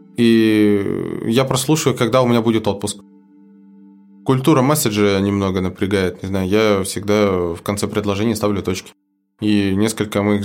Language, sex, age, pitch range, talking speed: Russian, male, 20-39, 95-105 Hz, 140 wpm